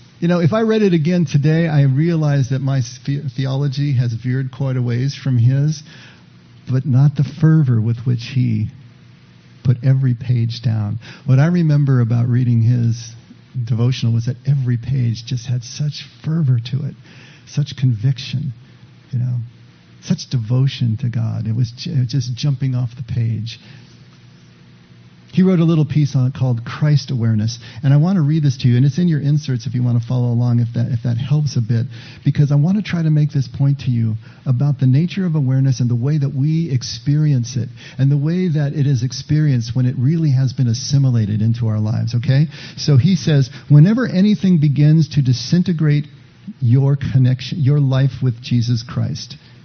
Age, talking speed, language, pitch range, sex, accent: 50-69, 185 wpm, English, 120-145 Hz, male, American